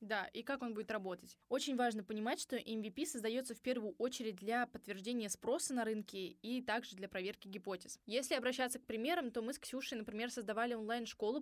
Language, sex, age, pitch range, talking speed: Russian, female, 20-39, 210-255 Hz, 190 wpm